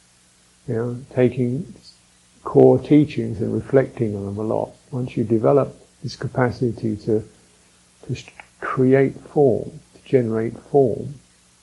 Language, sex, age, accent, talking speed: English, male, 50-69, British, 125 wpm